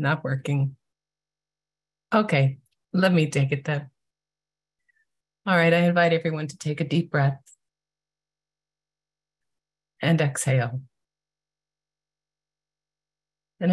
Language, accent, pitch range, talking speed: English, American, 145-160 Hz, 90 wpm